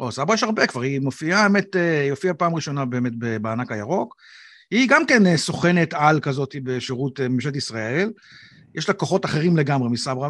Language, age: Hebrew, 50-69